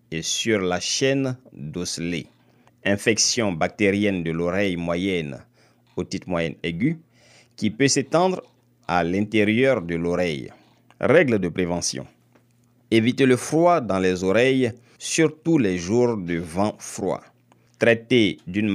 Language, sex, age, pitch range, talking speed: French, male, 50-69, 90-120 Hz, 120 wpm